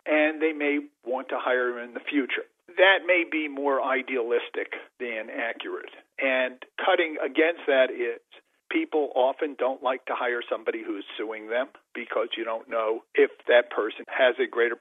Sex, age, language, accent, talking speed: male, 50-69, English, American, 170 wpm